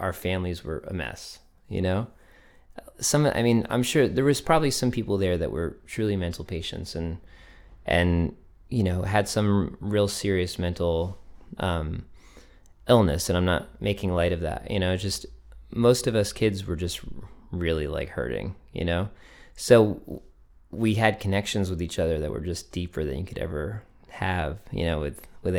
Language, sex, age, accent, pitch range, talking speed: English, male, 20-39, American, 85-105 Hz, 175 wpm